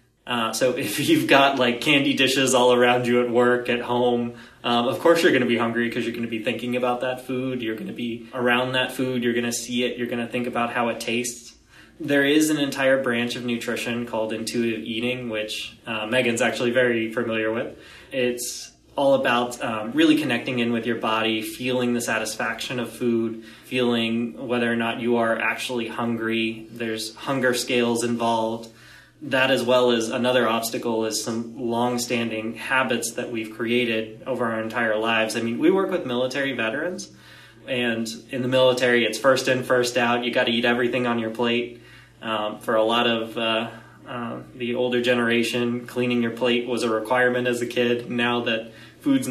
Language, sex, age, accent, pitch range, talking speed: English, male, 20-39, American, 115-125 Hz, 195 wpm